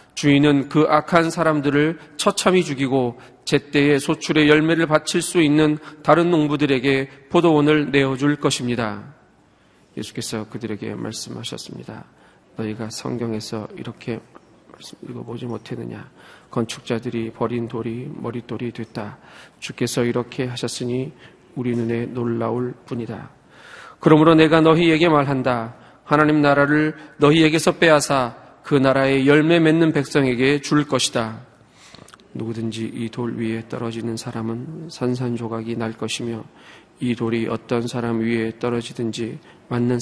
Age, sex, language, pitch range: 40-59, male, Korean, 120-150 Hz